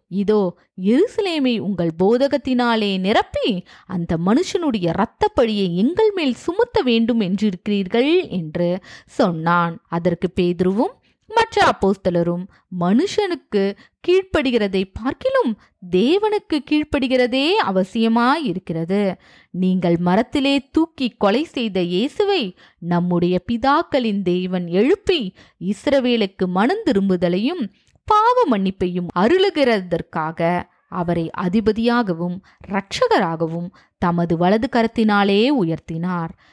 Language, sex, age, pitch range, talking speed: Tamil, female, 20-39, 175-260 Hz, 75 wpm